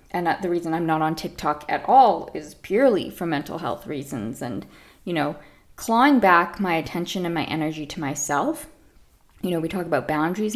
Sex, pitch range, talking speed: female, 155-190 Hz, 190 wpm